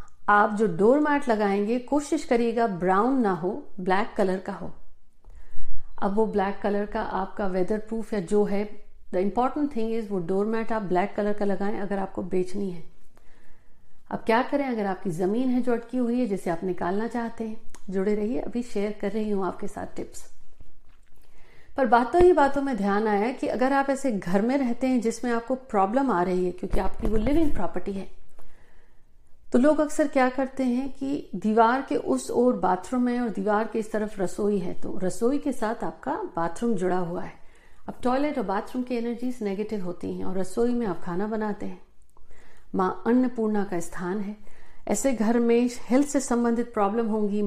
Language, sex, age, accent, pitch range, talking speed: Hindi, female, 50-69, native, 195-250 Hz, 195 wpm